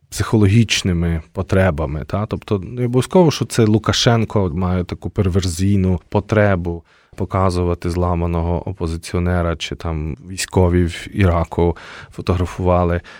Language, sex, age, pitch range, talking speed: Ukrainian, male, 20-39, 90-120 Hz, 100 wpm